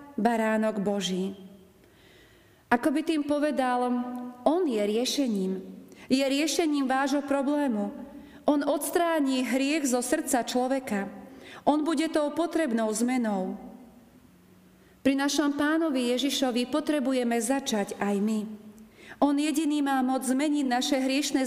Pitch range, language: 215-275 Hz, Slovak